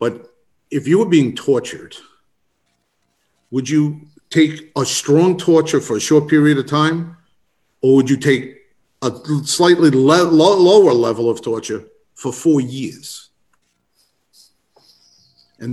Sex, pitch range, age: male, 120-150 Hz, 50-69